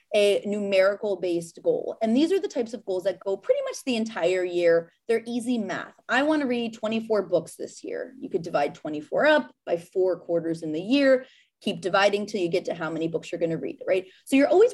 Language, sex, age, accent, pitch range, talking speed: English, female, 20-39, American, 190-270 Hz, 230 wpm